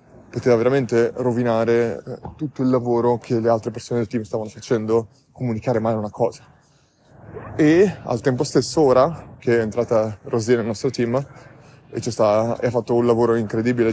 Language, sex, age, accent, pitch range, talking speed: Italian, male, 20-39, native, 115-125 Hz, 155 wpm